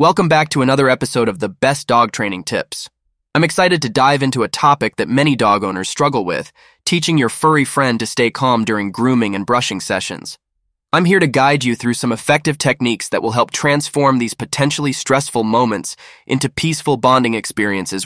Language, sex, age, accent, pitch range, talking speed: English, male, 20-39, American, 110-140 Hz, 190 wpm